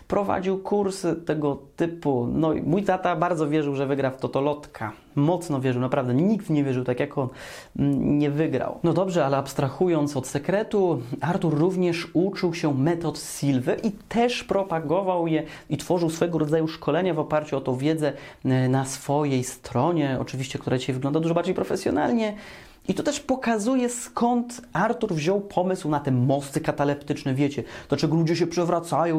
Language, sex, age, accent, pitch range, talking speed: Polish, male, 30-49, native, 140-185 Hz, 160 wpm